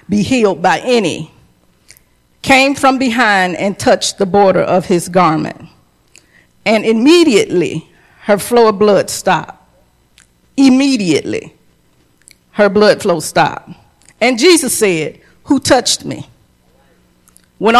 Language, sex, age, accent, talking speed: English, female, 40-59, American, 110 wpm